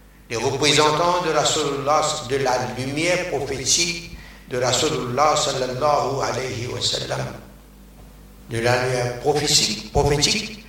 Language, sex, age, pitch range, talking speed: French, male, 60-79, 125-150 Hz, 105 wpm